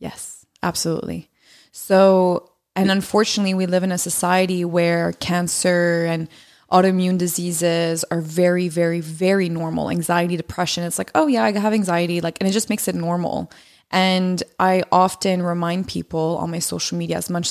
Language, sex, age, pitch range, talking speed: English, female, 20-39, 175-200 Hz, 160 wpm